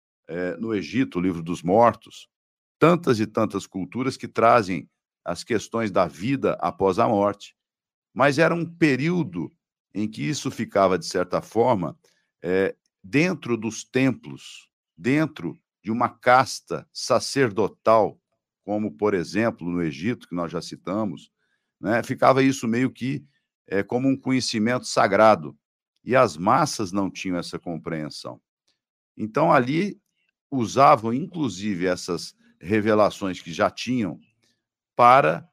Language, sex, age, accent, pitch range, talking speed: Portuguese, male, 60-79, Brazilian, 95-140 Hz, 130 wpm